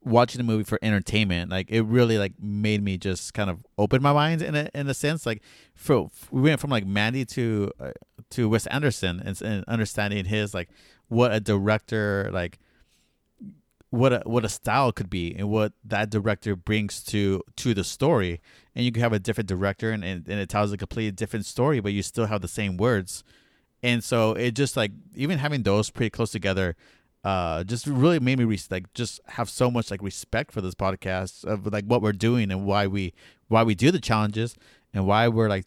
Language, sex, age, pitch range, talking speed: English, male, 30-49, 95-115 Hz, 210 wpm